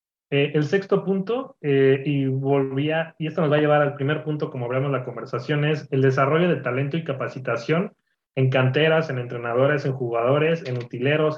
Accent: Mexican